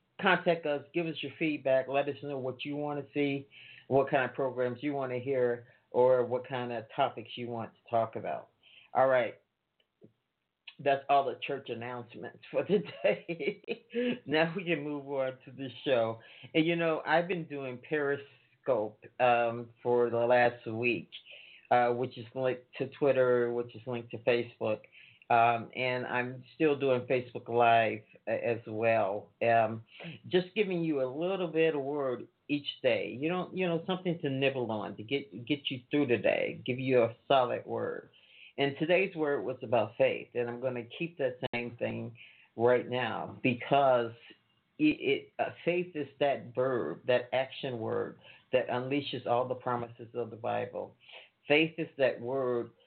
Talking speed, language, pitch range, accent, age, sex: 170 wpm, English, 120-145 Hz, American, 50-69, male